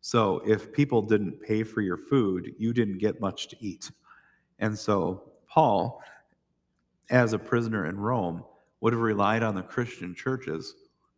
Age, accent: 40-59, American